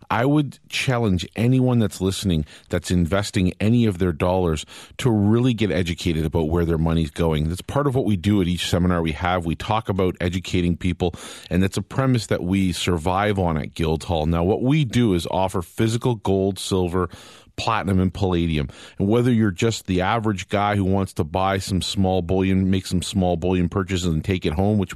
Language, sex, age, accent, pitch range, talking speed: English, male, 40-59, American, 90-110 Hz, 200 wpm